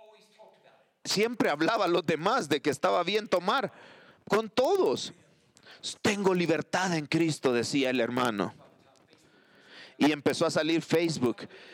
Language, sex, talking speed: English, male, 125 wpm